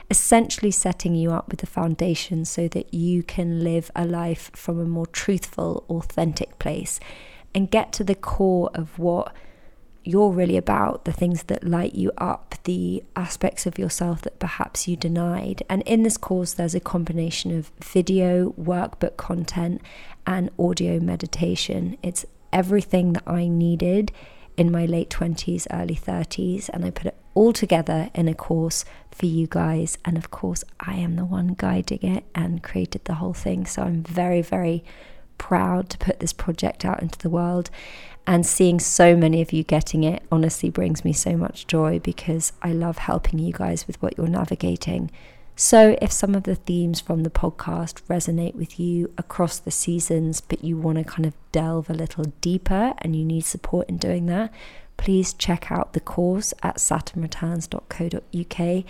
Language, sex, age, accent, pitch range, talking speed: English, female, 30-49, British, 165-185 Hz, 175 wpm